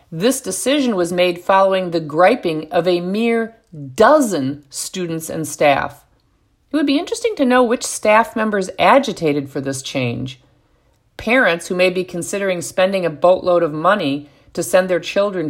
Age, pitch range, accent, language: 50-69, 150-200 Hz, American, English